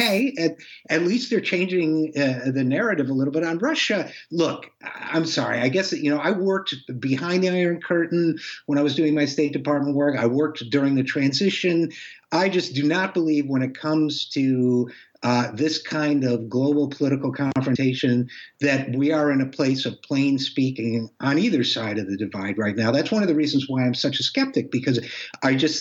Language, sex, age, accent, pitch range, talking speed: English, male, 50-69, American, 125-160 Hz, 200 wpm